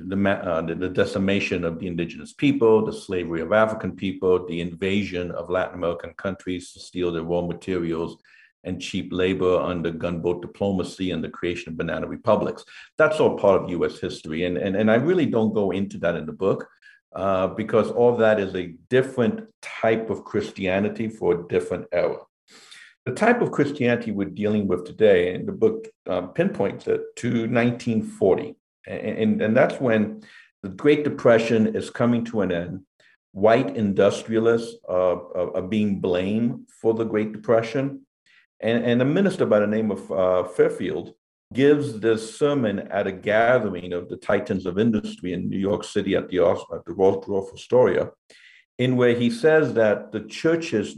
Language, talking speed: English, 170 wpm